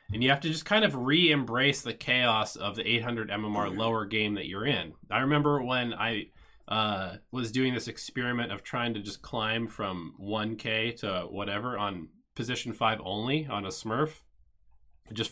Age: 20-39